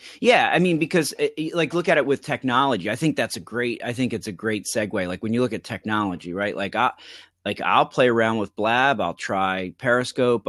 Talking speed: 225 wpm